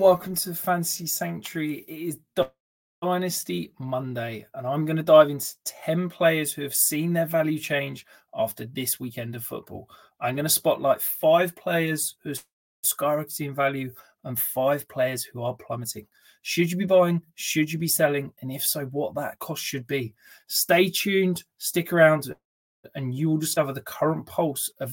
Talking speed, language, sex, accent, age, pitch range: 175 wpm, English, male, British, 20-39, 130-165 Hz